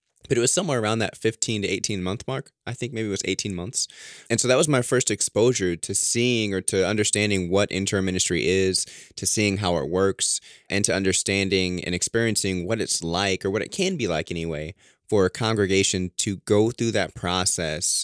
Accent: American